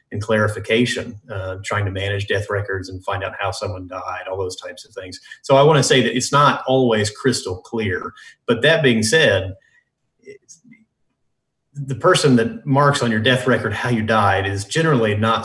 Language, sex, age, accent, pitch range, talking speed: English, male, 30-49, American, 100-120 Hz, 185 wpm